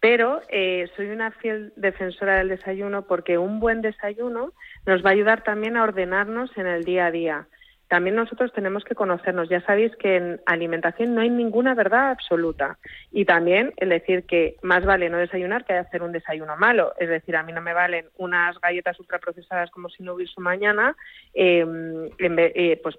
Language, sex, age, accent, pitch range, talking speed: Spanish, female, 30-49, Spanish, 175-225 Hz, 185 wpm